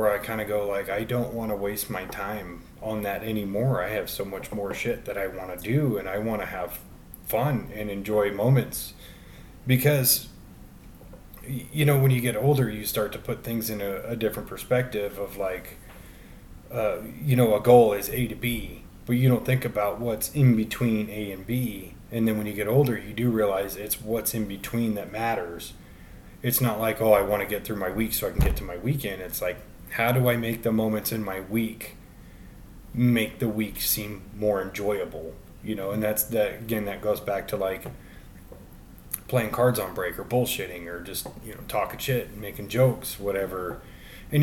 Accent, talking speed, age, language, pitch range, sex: American, 205 wpm, 30-49, English, 95-120 Hz, male